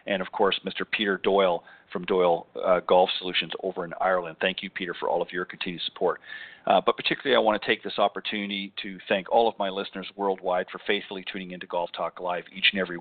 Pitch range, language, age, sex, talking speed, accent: 95-100 Hz, English, 40-59, male, 225 wpm, American